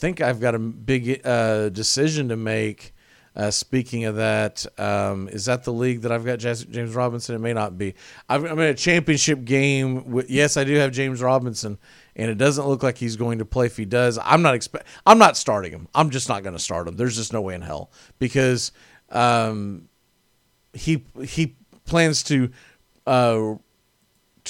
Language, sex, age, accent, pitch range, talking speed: English, male, 40-59, American, 115-150 Hz, 195 wpm